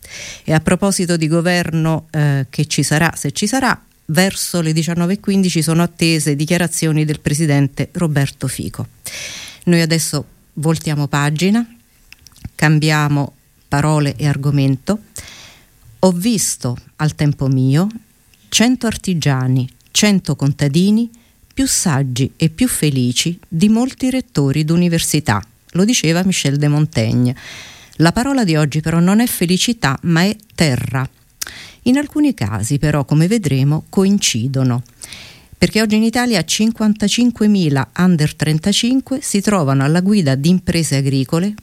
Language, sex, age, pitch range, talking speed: Italian, female, 50-69, 140-195 Hz, 125 wpm